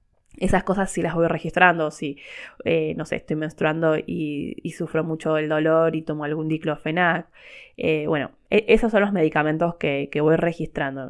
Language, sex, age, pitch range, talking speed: Spanish, female, 20-39, 155-200 Hz, 180 wpm